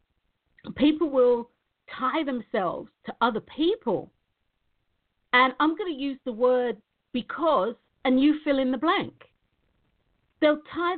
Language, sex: English, female